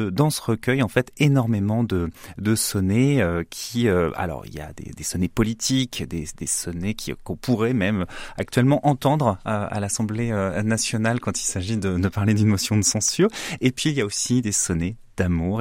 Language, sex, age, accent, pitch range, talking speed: French, male, 30-49, French, 90-115 Hz, 195 wpm